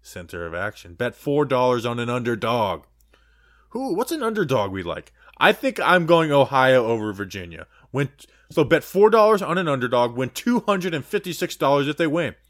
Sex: male